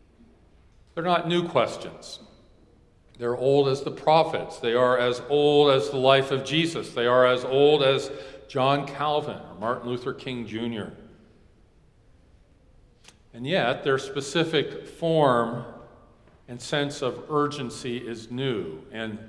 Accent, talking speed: American, 130 wpm